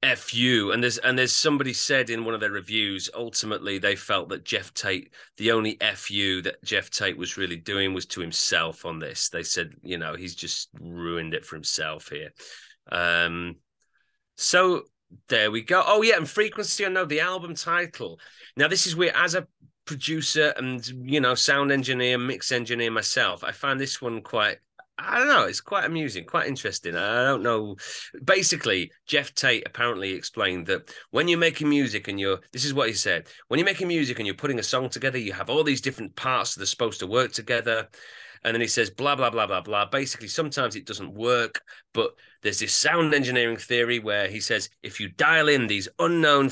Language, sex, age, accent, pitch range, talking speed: English, male, 30-49, British, 105-150 Hz, 200 wpm